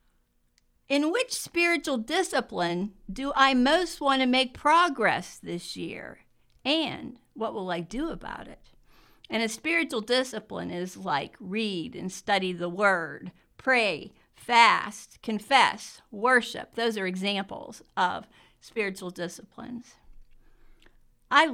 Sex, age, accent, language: female, 50-69, American, English